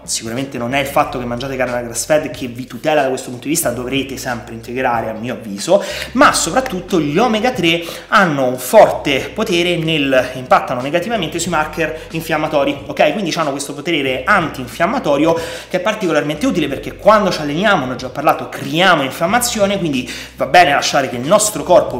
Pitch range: 130-175 Hz